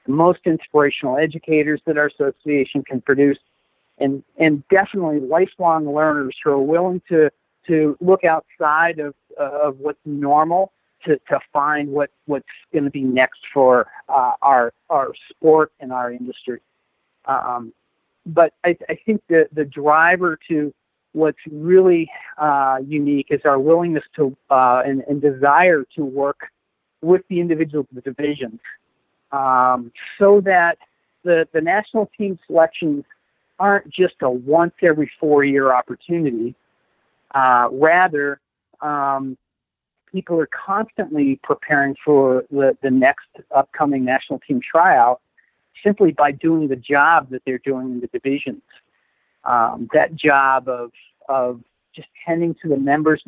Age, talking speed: 50-69, 135 wpm